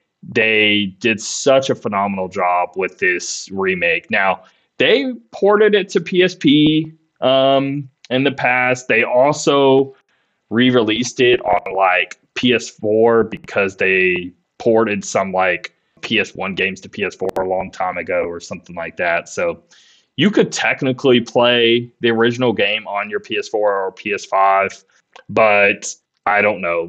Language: English